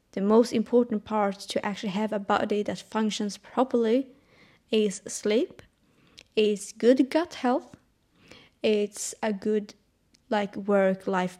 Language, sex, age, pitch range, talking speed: English, female, 20-39, 210-245 Hz, 120 wpm